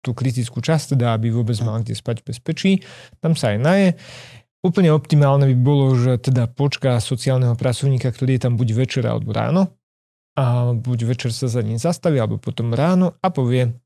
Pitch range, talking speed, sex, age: 125-150 Hz, 180 wpm, male, 30-49